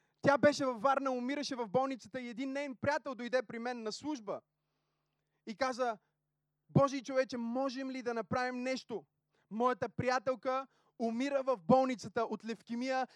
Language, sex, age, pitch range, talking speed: Bulgarian, male, 20-39, 175-240 Hz, 145 wpm